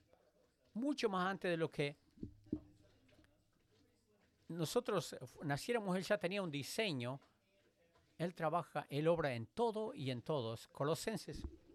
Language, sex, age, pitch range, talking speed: English, male, 50-69, 120-175 Hz, 115 wpm